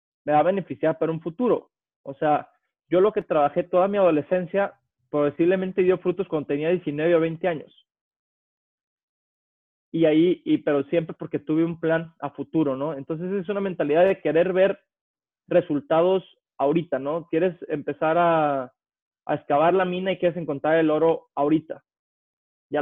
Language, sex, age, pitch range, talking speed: Spanish, male, 20-39, 145-180 Hz, 160 wpm